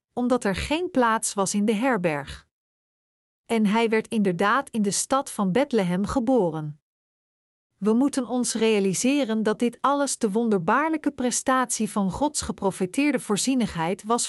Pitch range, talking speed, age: 195-250 Hz, 140 wpm, 40-59